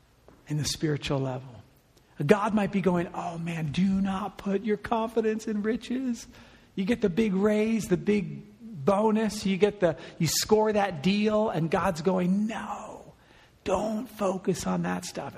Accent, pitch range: American, 165-220 Hz